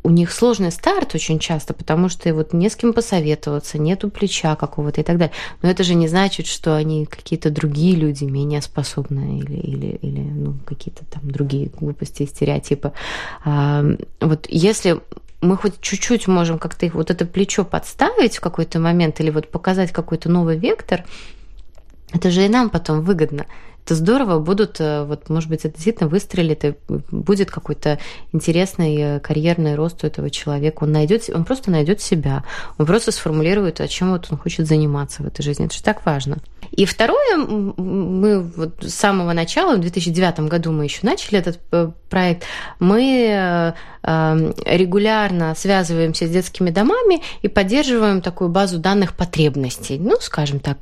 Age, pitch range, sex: 20-39, 155-190 Hz, female